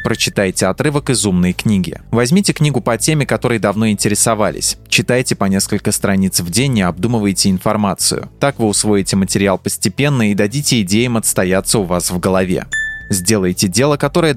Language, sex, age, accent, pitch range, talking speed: Russian, male, 20-39, native, 95-125 Hz, 155 wpm